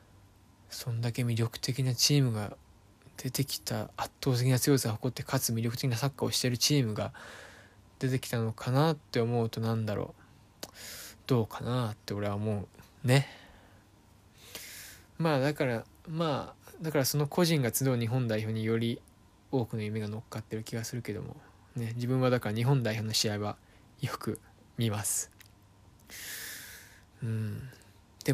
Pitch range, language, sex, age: 105-130 Hz, Japanese, male, 20-39